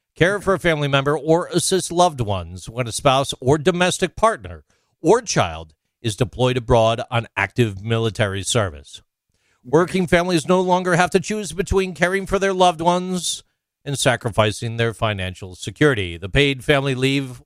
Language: English